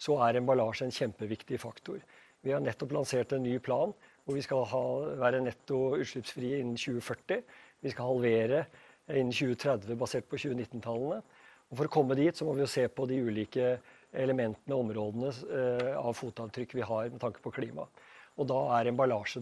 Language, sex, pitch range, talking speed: English, male, 120-135 Hz, 170 wpm